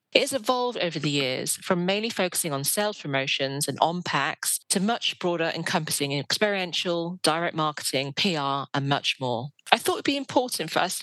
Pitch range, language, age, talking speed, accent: 145-190 Hz, English, 40-59, 190 wpm, British